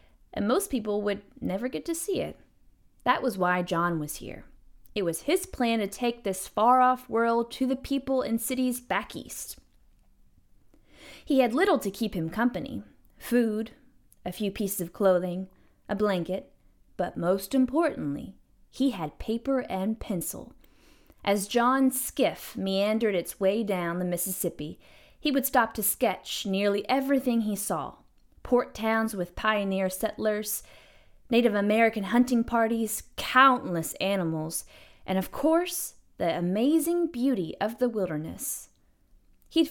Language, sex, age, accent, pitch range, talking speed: English, female, 20-39, American, 195-255 Hz, 140 wpm